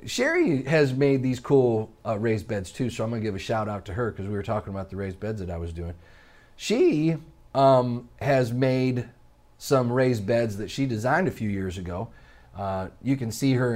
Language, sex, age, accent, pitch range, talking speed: English, male, 30-49, American, 90-125 Hz, 220 wpm